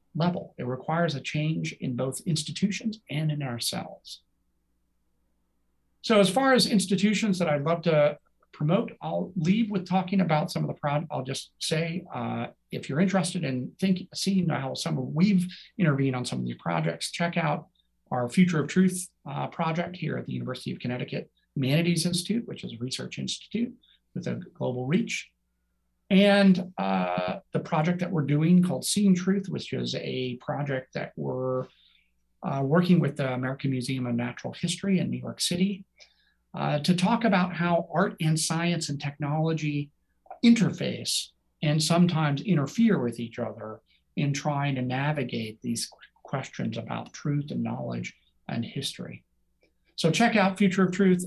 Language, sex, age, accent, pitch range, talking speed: English, male, 50-69, American, 125-185 Hz, 165 wpm